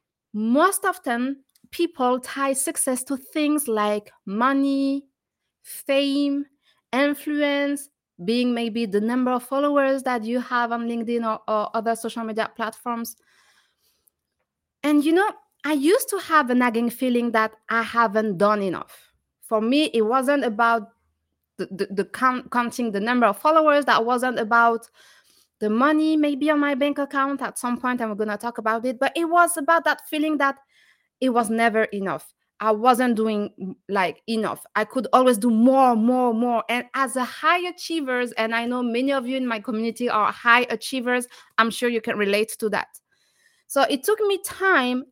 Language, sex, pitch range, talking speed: English, female, 225-280 Hz, 175 wpm